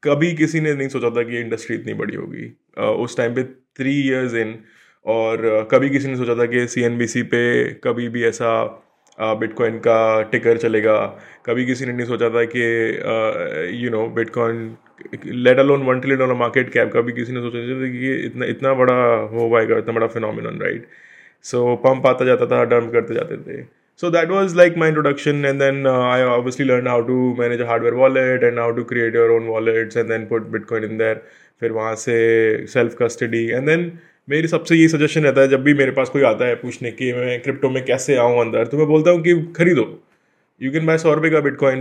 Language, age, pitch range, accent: Hindi, 20-39, 115-150 Hz, native